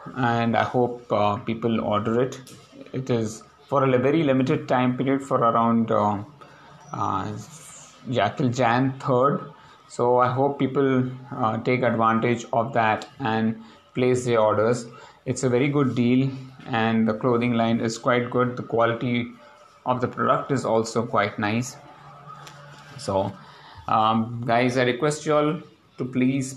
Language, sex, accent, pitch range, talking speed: English, male, Indian, 115-135 Hz, 150 wpm